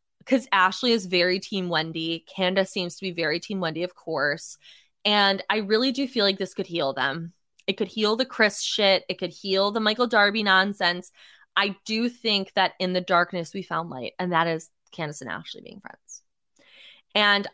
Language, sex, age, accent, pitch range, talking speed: English, female, 20-39, American, 175-225 Hz, 195 wpm